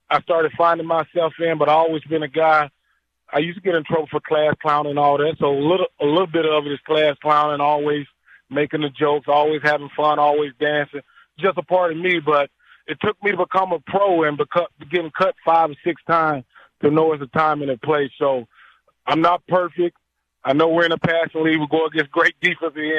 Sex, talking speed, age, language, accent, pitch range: male, 235 wpm, 20-39, English, American, 145-160 Hz